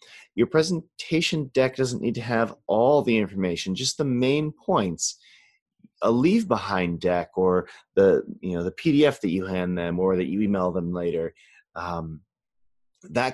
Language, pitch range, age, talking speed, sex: English, 95-130 Hz, 30-49, 160 wpm, male